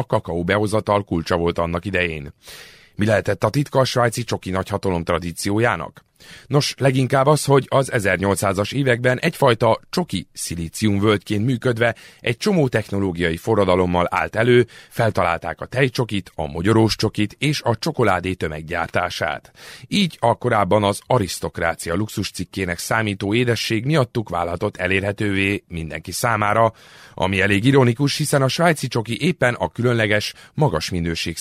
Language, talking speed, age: Hungarian, 125 wpm, 30-49